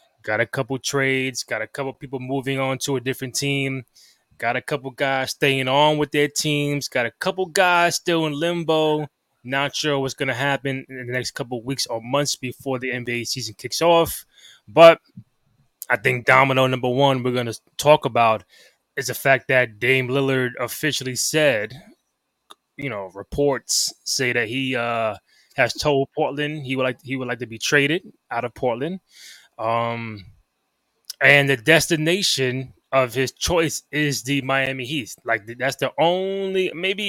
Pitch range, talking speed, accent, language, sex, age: 125-150 Hz, 180 wpm, American, English, male, 20-39